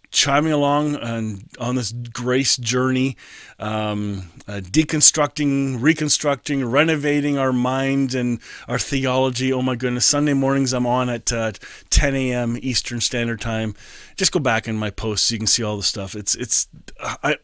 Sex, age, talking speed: male, 30-49, 160 wpm